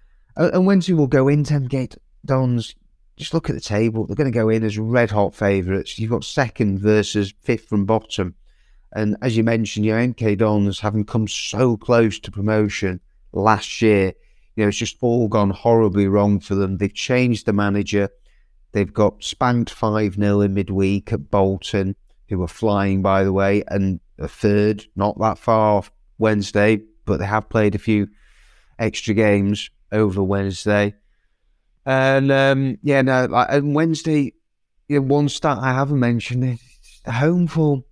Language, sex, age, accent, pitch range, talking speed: English, male, 30-49, British, 100-130 Hz, 170 wpm